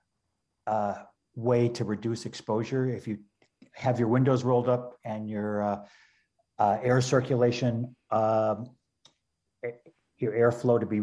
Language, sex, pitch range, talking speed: English, male, 105-125 Hz, 125 wpm